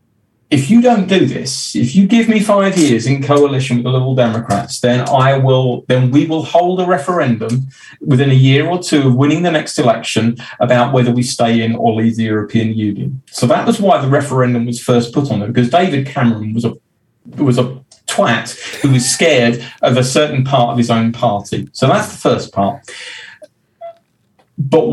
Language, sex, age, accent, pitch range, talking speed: English, male, 40-59, British, 120-160 Hz, 195 wpm